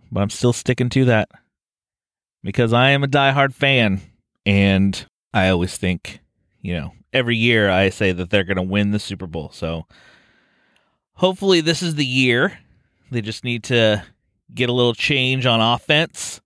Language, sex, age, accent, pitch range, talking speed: English, male, 30-49, American, 100-130 Hz, 170 wpm